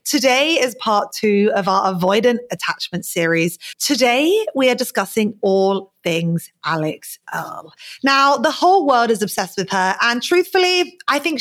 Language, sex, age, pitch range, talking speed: English, female, 30-49, 185-245 Hz, 155 wpm